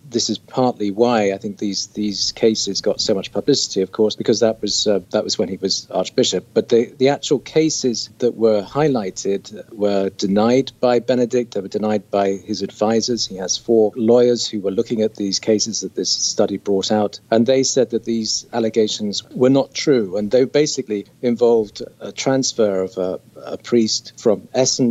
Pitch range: 100-120 Hz